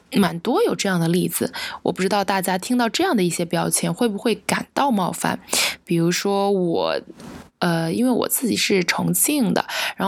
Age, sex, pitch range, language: 20-39, female, 180-235 Hz, Chinese